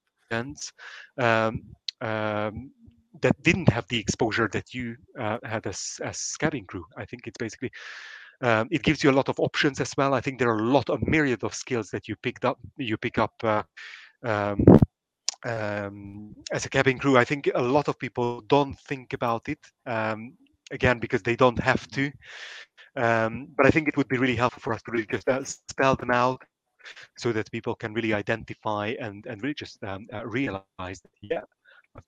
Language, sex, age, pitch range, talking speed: English, male, 30-49, 100-125 Hz, 195 wpm